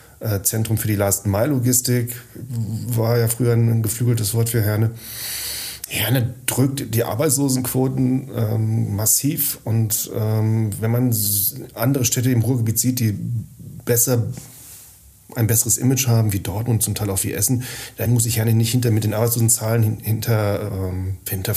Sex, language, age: male, German, 40-59